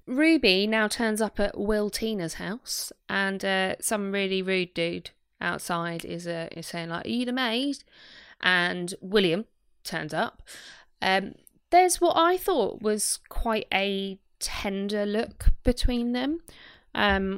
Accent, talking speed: British, 140 wpm